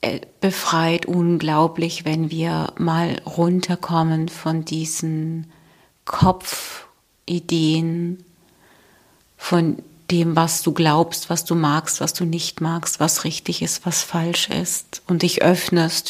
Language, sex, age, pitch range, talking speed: German, female, 40-59, 165-205 Hz, 110 wpm